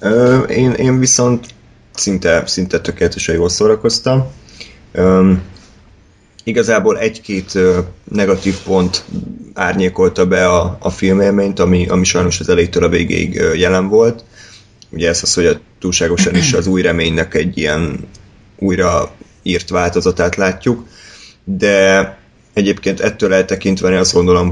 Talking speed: 120 wpm